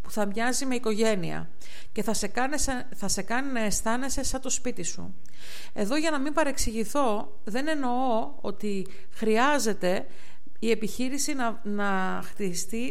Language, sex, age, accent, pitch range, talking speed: Greek, female, 50-69, native, 200-255 Hz, 155 wpm